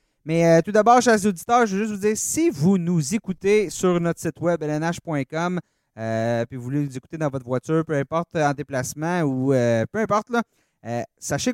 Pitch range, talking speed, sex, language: 145-185 Hz, 210 wpm, male, French